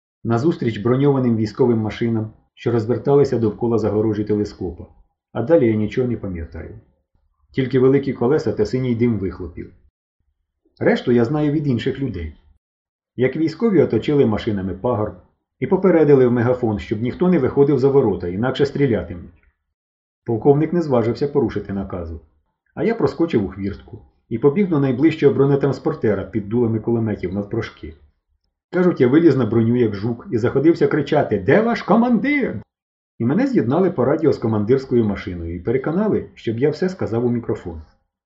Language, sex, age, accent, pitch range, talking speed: Ukrainian, male, 30-49, native, 90-140 Hz, 145 wpm